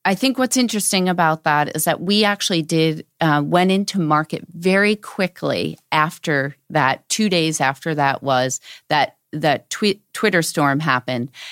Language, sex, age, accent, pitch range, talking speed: English, female, 40-59, American, 145-185 Hz, 155 wpm